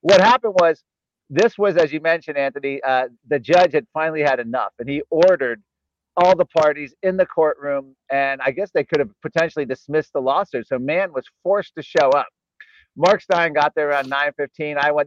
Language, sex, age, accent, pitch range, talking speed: English, male, 50-69, American, 145-185 Hz, 205 wpm